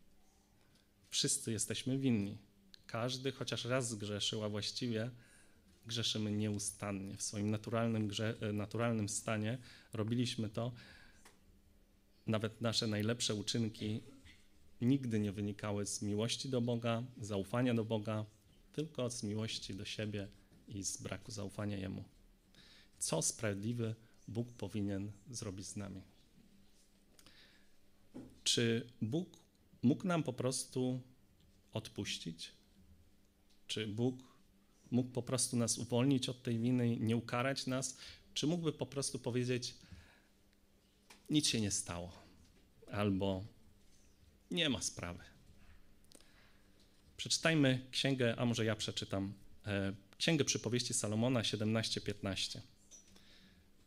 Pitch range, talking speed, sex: 100-120 Hz, 100 wpm, male